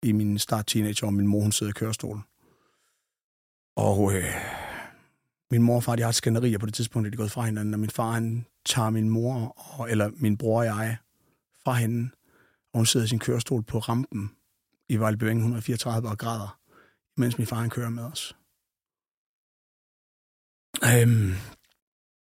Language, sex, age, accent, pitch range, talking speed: Danish, male, 30-49, native, 105-120 Hz, 165 wpm